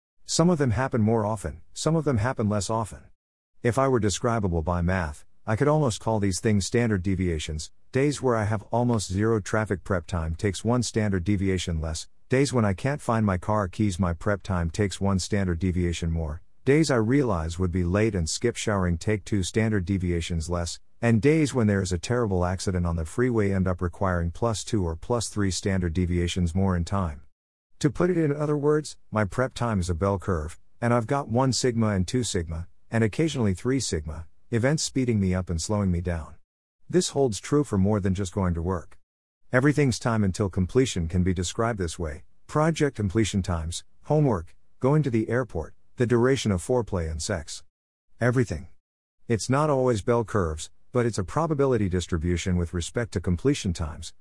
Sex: male